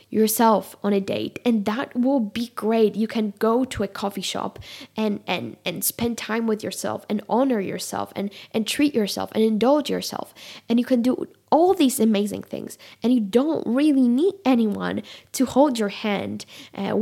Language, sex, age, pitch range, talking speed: English, female, 10-29, 200-230 Hz, 185 wpm